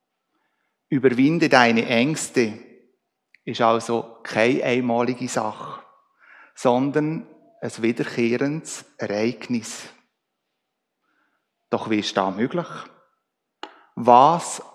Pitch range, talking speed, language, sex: 120-155 Hz, 75 wpm, German, male